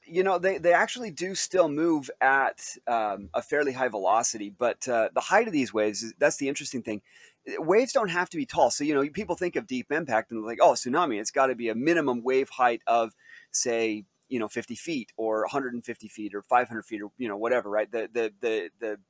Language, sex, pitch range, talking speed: English, male, 110-150 Hz, 220 wpm